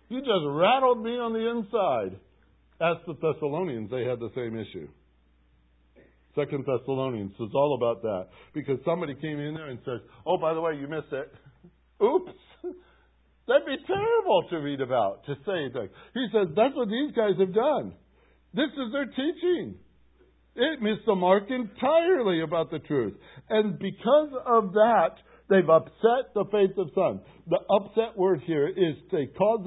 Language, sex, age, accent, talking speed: English, male, 60-79, American, 165 wpm